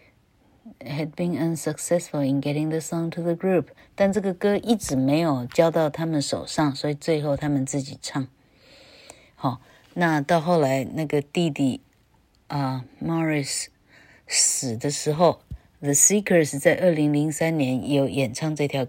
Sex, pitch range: female, 140-180 Hz